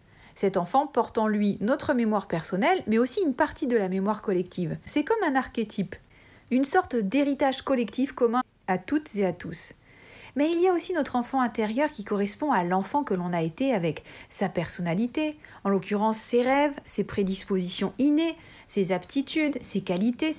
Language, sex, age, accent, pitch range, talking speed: French, female, 40-59, French, 185-265 Hz, 175 wpm